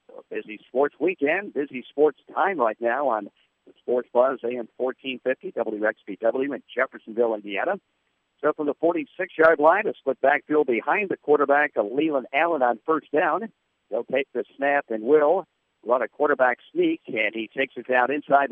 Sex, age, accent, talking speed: male, 50-69, American, 170 wpm